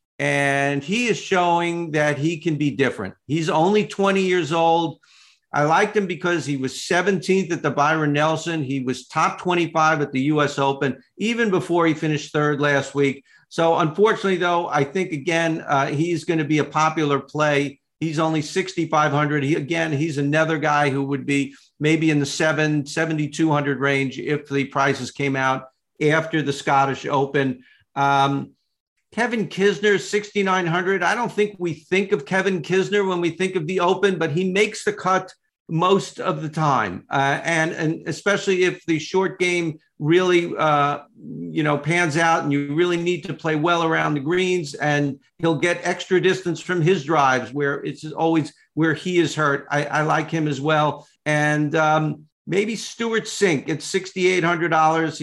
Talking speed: 175 wpm